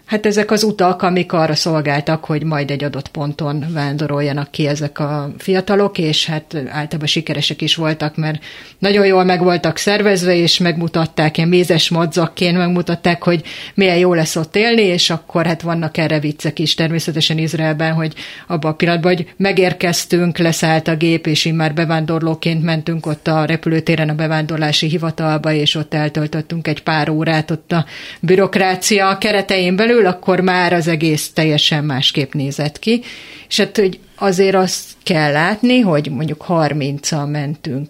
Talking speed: 155 wpm